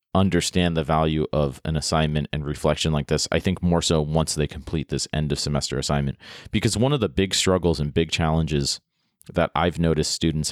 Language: English